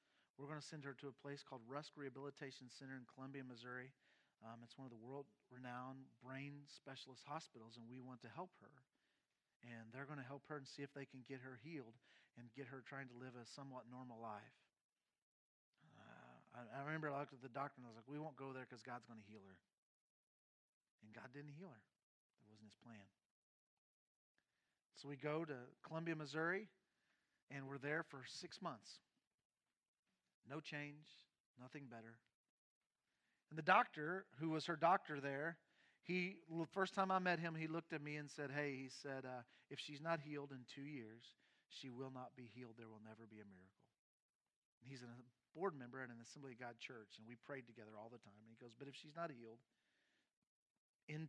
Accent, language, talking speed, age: American, English, 200 wpm, 40-59